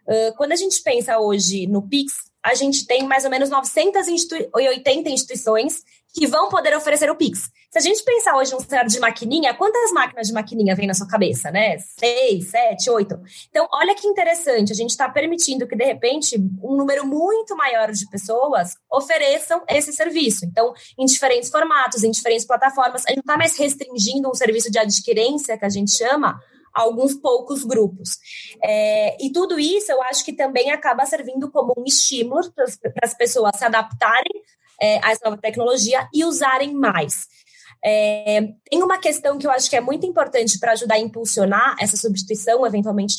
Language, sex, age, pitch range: Portuguese, female, 20-39, 220-290 Hz